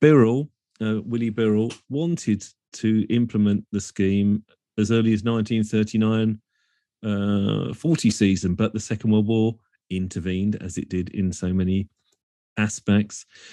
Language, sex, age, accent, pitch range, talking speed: English, male, 40-59, British, 100-120 Hz, 125 wpm